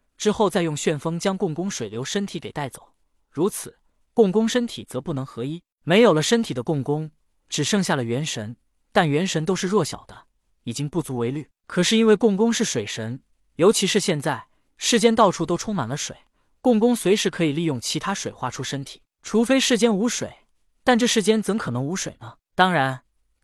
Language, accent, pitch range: Chinese, native, 140-200 Hz